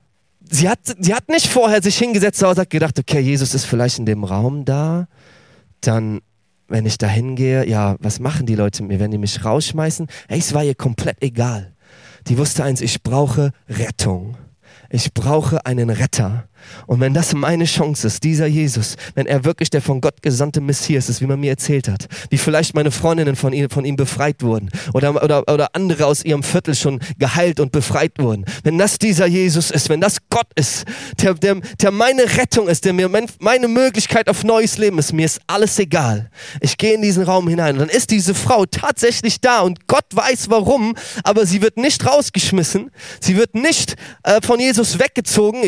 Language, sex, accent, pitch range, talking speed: German, male, German, 130-200 Hz, 200 wpm